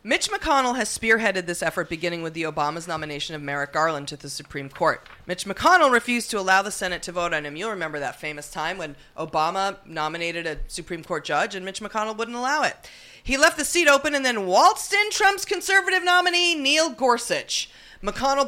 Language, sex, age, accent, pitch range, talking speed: English, female, 30-49, American, 165-250 Hz, 210 wpm